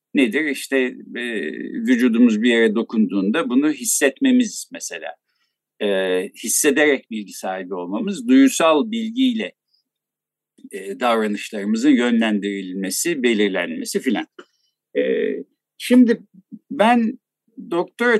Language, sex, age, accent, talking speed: Turkish, male, 60-79, native, 85 wpm